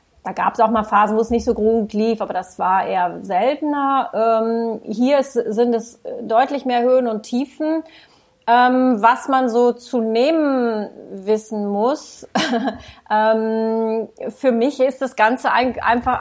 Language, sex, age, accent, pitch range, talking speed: German, female, 30-49, German, 220-250 Hz, 160 wpm